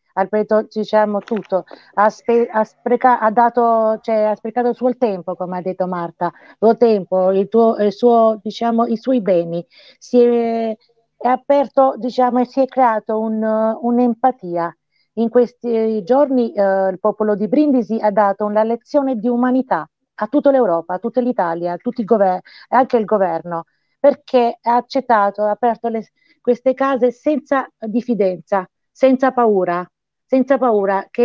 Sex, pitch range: female, 205-245 Hz